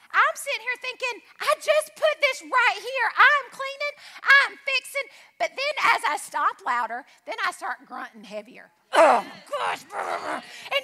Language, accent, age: English, American, 40-59